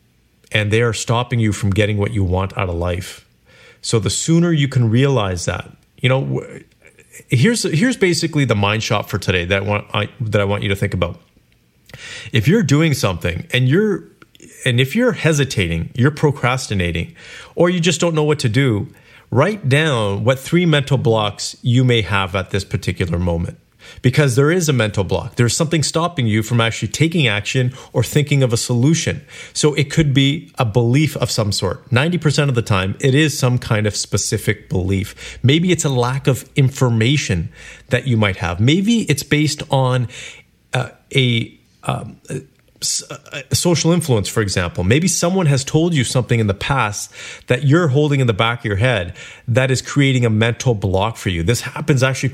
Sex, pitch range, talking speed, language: male, 105-145 Hz, 185 wpm, English